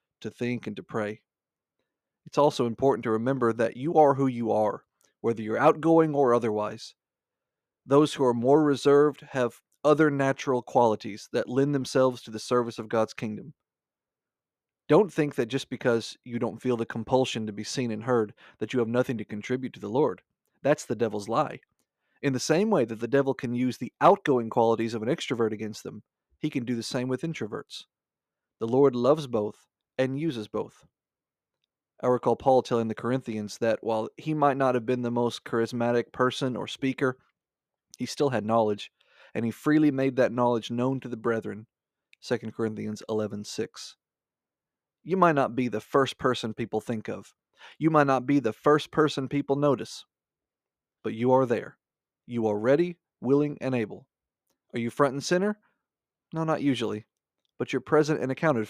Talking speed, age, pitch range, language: 180 wpm, 40-59, 115-140 Hz, English